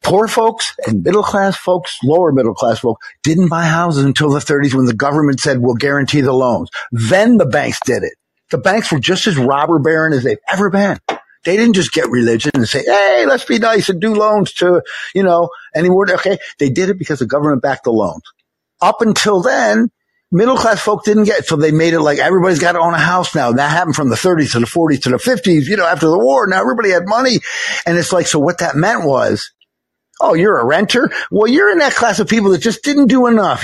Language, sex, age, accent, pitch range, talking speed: English, male, 50-69, American, 150-220 Hz, 230 wpm